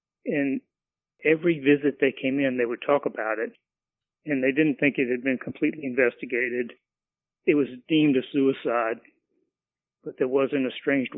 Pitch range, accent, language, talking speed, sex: 130-145 Hz, American, English, 160 wpm, male